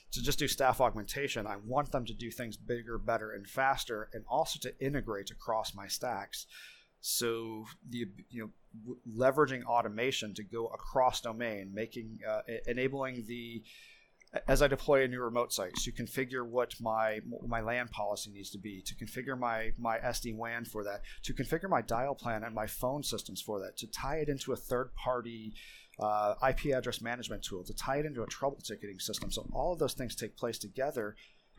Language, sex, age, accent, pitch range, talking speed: English, male, 30-49, American, 110-130 Hz, 195 wpm